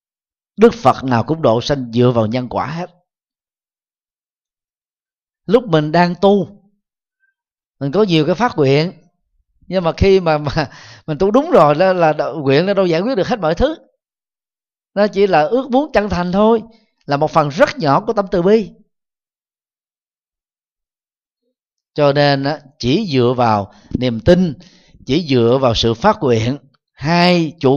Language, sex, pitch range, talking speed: Vietnamese, male, 130-190 Hz, 160 wpm